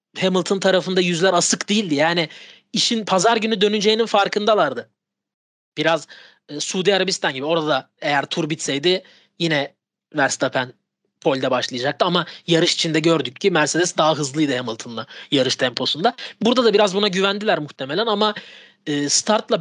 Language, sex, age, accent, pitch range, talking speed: Turkish, male, 30-49, native, 170-225 Hz, 140 wpm